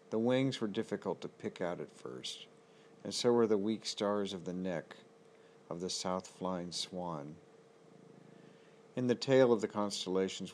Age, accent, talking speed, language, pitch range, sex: 50-69, American, 160 wpm, English, 90-110 Hz, male